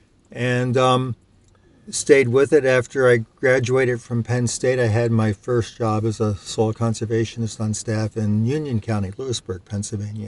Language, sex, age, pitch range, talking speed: English, male, 50-69, 110-125 Hz, 160 wpm